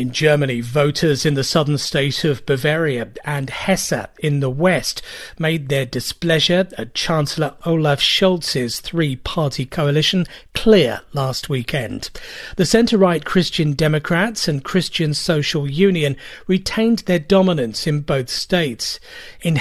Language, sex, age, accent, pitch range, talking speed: English, male, 40-59, British, 145-190 Hz, 125 wpm